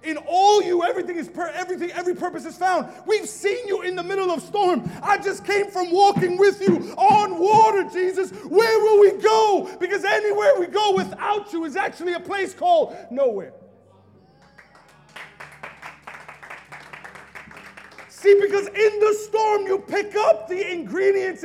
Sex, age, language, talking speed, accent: male, 30-49, English, 155 wpm, American